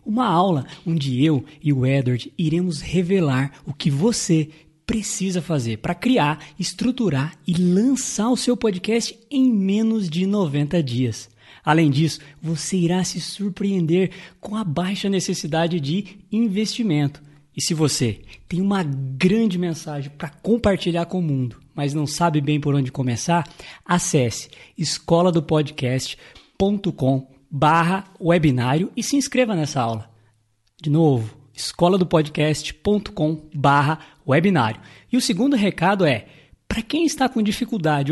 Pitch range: 145-195 Hz